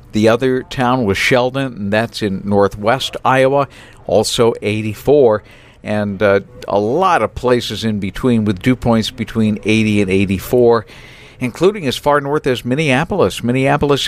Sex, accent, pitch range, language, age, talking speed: male, American, 105-125 Hz, English, 50-69, 145 wpm